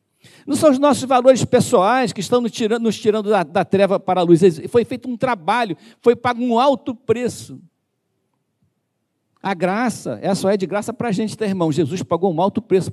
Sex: male